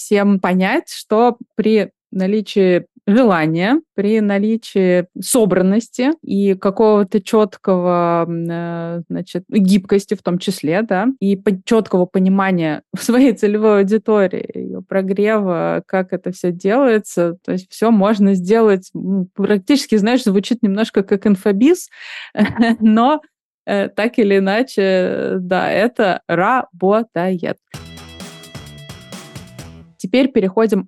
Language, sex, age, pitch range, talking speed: Russian, female, 20-39, 185-225 Hz, 95 wpm